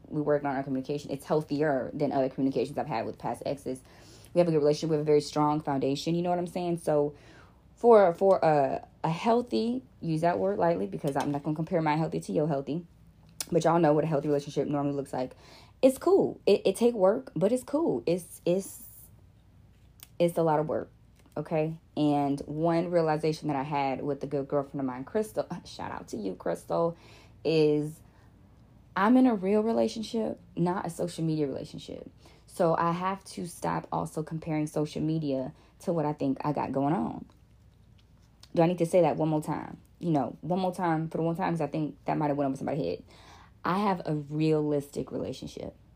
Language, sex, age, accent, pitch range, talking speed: English, female, 20-39, American, 140-170 Hz, 205 wpm